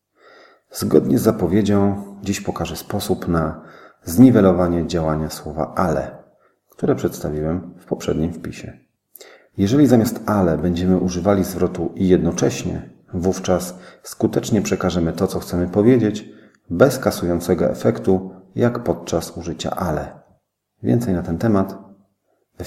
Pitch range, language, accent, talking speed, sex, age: 85-100 Hz, Polish, native, 115 wpm, male, 40-59